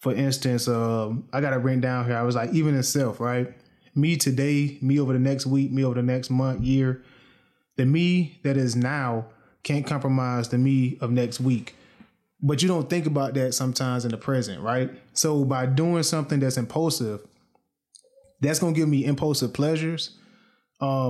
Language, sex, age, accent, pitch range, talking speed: English, male, 20-39, American, 130-155 Hz, 185 wpm